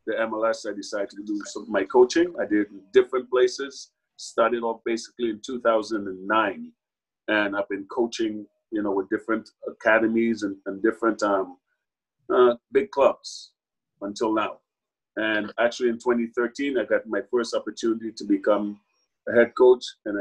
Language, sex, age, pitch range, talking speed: English, male, 30-49, 105-125 Hz, 155 wpm